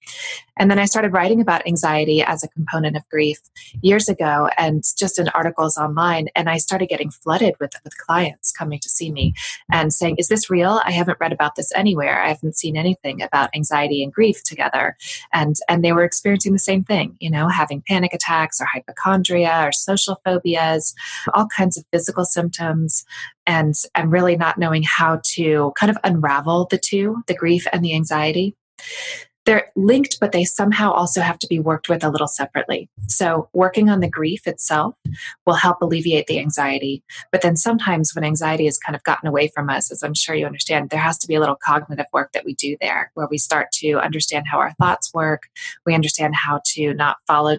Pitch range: 150-185 Hz